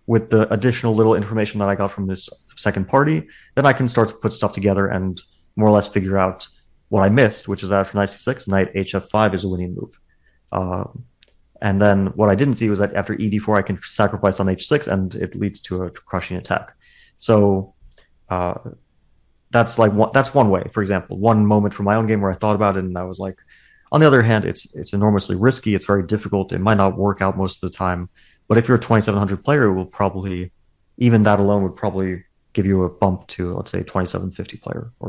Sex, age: male, 30-49